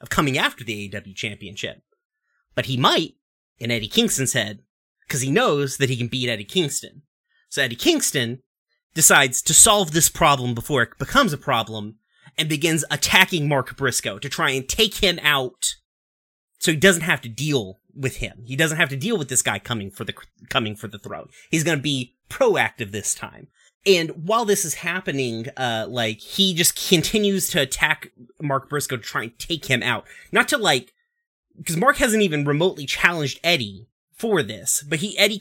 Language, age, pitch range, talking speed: English, 30-49, 125-175 Hz, 185 wpm